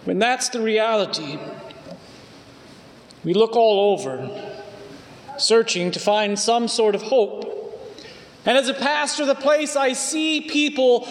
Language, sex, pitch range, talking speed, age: English, male, 220-280 Hz, 130 wpm, 40-59